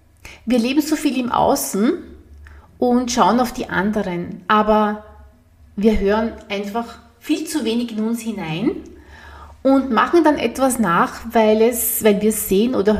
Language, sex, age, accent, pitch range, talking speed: German, female, 30-49, Austrian, 205-260 Hz, 150 wpm